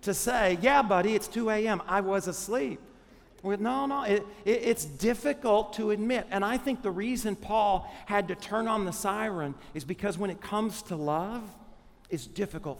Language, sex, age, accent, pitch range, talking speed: English, male, 50-69, American, 165-210 Hz, 175 wpm